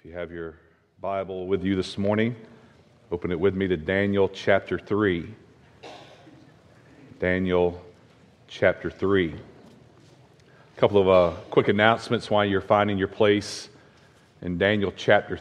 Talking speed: 130 wpm